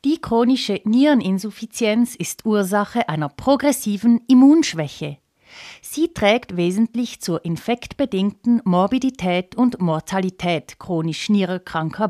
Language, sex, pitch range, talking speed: German, female, 170-250 Hz, 90 wpm